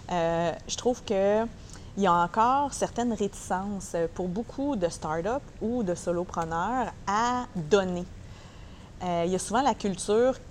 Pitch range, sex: 175-210 Hz, female